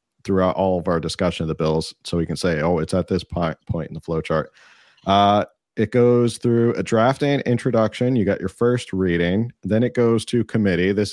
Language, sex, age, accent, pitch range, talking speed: English, male, 30-49, American, 85-110 Hz, 200 wpm